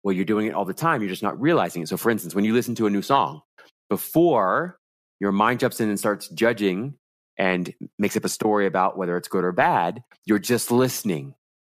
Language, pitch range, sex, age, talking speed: English, 90-115 Hz, male, 30-49, 225 wpm